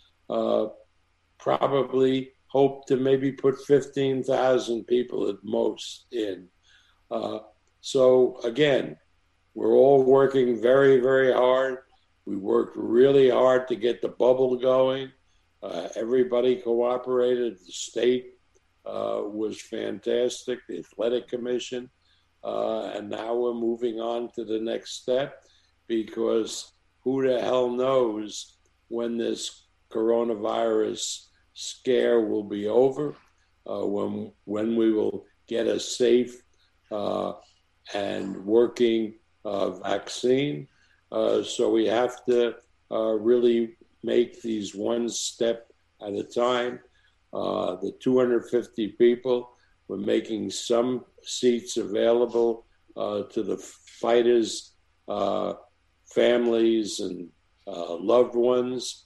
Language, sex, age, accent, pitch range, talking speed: English, male, 60-79, American, 110-125 Hz, 110 wpm